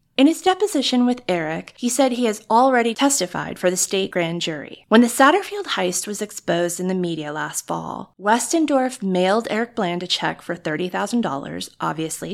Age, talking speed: 30-49, 175 wpm